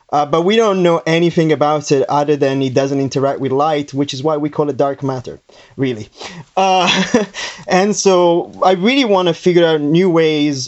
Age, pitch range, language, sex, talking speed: 20-39, 140-170 Hz, English, male, 195 wpm